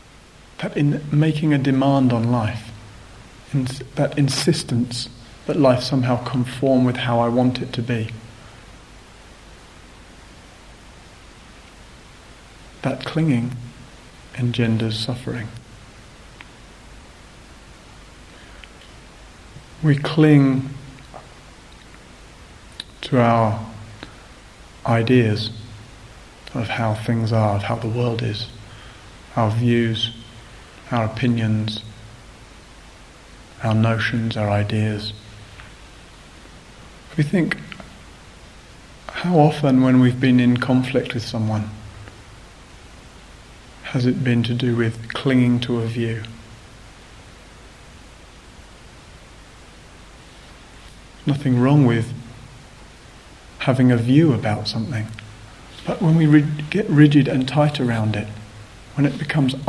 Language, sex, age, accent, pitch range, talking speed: English, male, 40-59, British, 110-130 Hz, 85 wpm